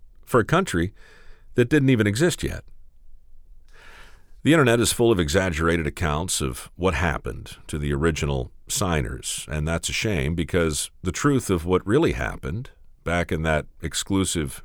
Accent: American